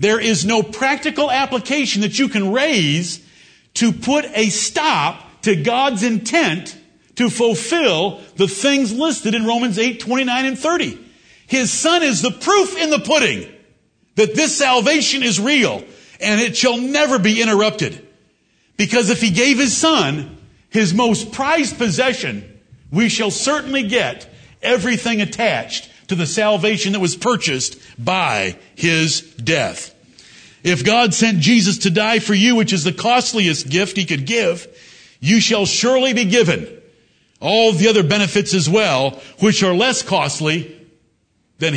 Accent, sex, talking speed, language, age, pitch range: American, male, 145 wpm, English, 50-69, 175-250 Hz